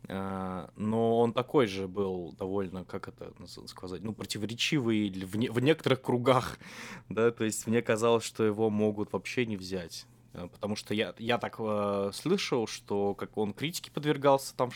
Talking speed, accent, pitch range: 165 wpm, native, 95-120 Hz